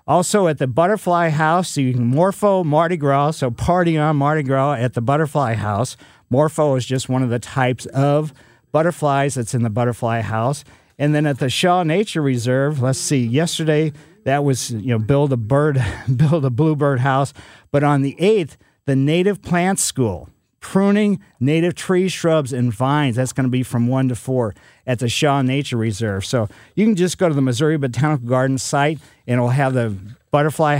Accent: American